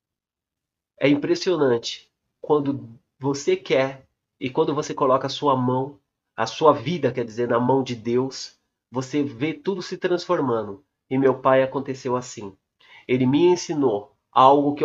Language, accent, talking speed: Portuguese, Brazilian, 145 wpm